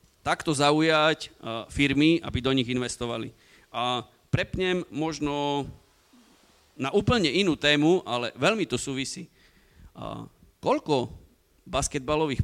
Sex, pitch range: male, 120-145 Hz